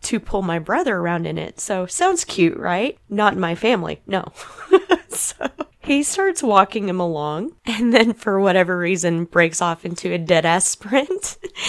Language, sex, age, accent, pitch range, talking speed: English, female, 20-39, American, 185-285 Hz, 175 wpm